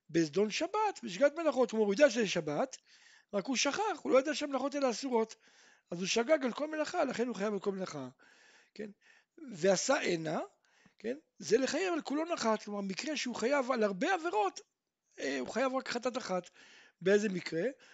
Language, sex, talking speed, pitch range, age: Hebrew, male, 160 wpm, 195-280 Hz, 60-79